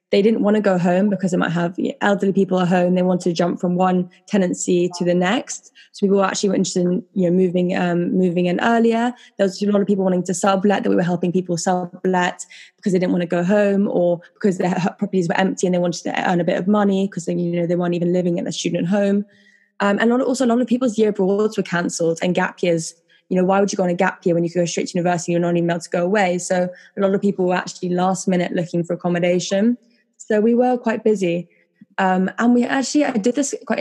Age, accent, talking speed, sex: 10-29, British, 265 wpm, female